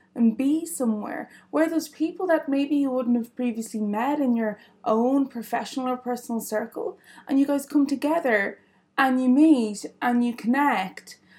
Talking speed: 165 wpm